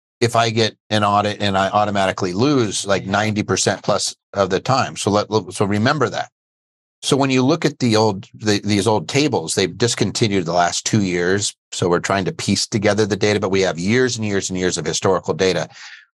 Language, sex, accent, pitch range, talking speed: English, male, American, 90-110 Hz, 210 wpm